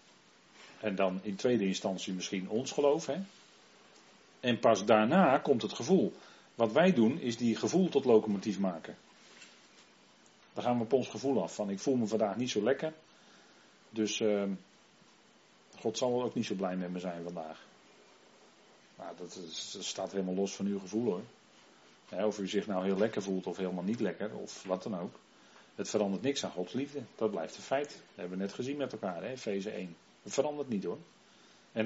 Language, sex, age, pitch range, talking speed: Dutch, male, 40-59, 100-120 Hz, 195 wpm